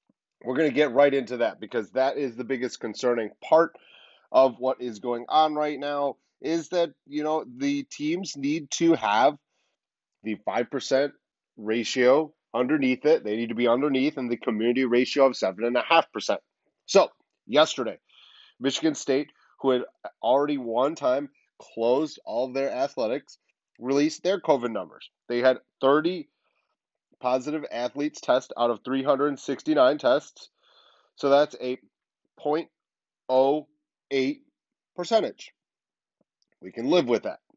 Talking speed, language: 135 wpm, English